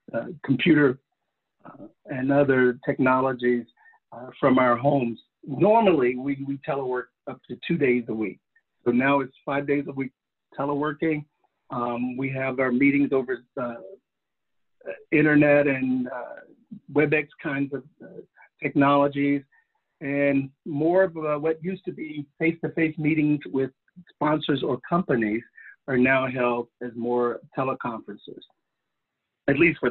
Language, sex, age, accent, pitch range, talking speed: English, male, 50-69, American, 125-155 Hz, 130 wpm